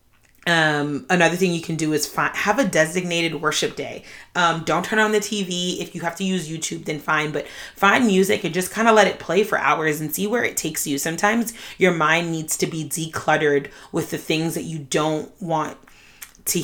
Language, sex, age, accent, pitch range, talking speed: English, female, 30-49, American, 150-185 Hz, 215 wpm